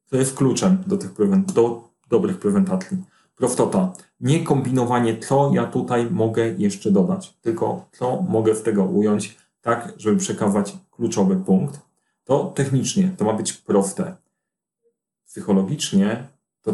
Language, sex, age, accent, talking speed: Polish, male, 30-49, native, 135 wpm